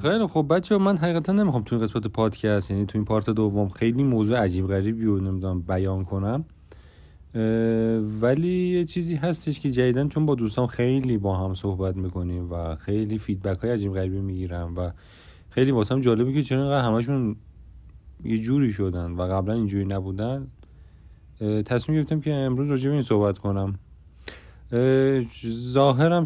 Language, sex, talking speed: Persian, male, 160 wpm